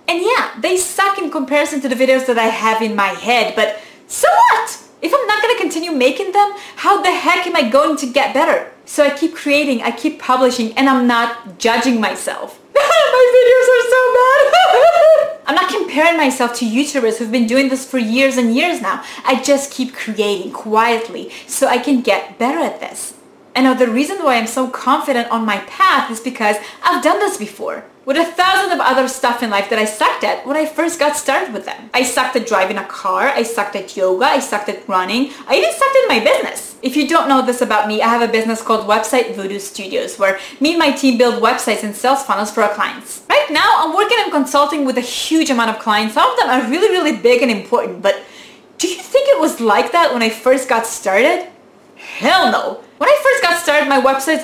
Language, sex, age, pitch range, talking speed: English, female, 20-39, 230-315 Hz, 225 wpm